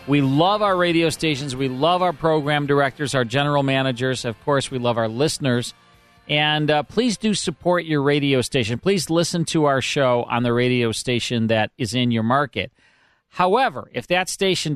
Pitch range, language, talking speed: 120-155 Hz, English, 185 wpm